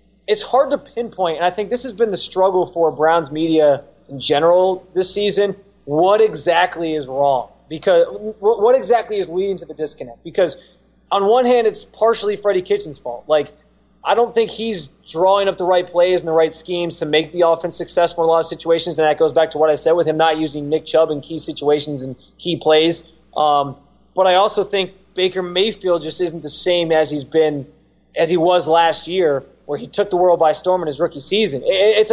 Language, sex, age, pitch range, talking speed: English, male, 20-39, 160-205 Hz, 215 wpm